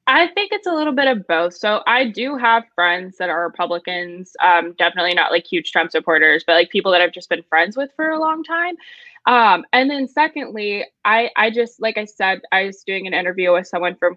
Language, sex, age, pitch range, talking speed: English, female, 10-29, 185-275 Hz, 230 wpm